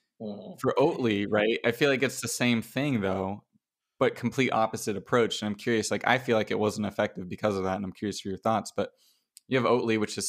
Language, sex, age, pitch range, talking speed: English, male, 20-39, 100-115 Hz, 235 wpm